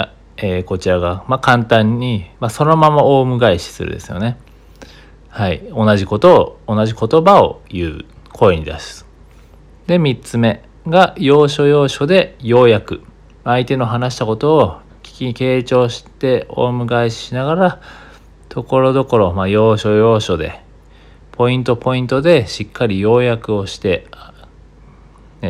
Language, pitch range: Japanese, 90-130 Hz